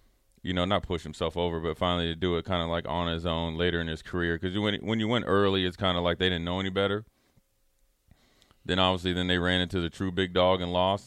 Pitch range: 85-95 Hz